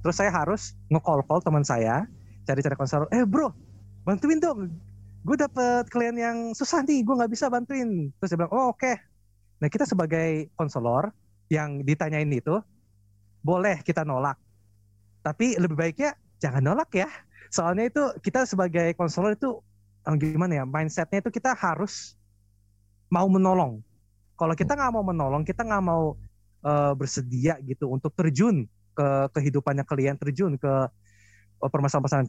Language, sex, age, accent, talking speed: Indonesian, male, 20-39, native, 145 wpm